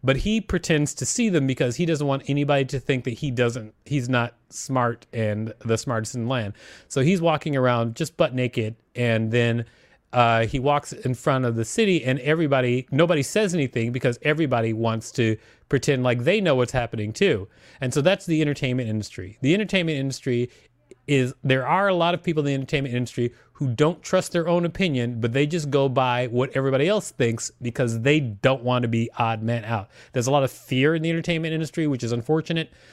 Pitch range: 120-155 Hz